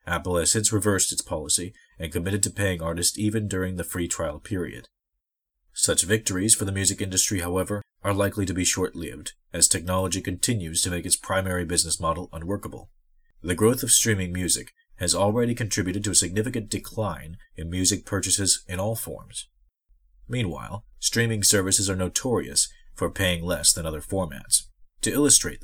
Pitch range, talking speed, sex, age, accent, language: 90-105 Hz, 165 wpm, male, 30-49, American, English